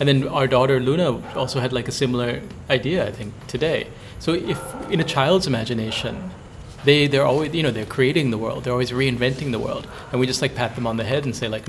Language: English